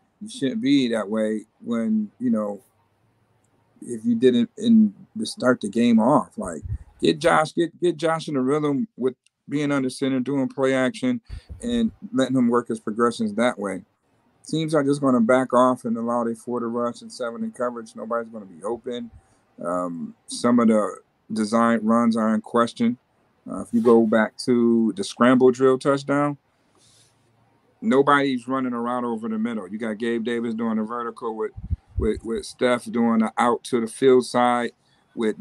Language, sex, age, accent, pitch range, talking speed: English, male, 50-69, American, 115-135 Hz, 180 wpm